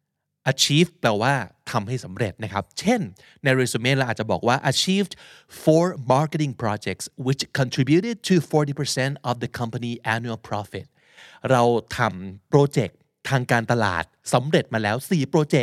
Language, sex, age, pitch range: Thai, male, 20-39, 110-150 Hz